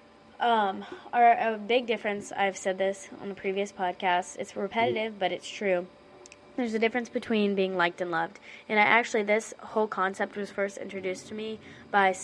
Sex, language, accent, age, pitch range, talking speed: female, English, American, 20-39, 180-210 Hz, 180 wpm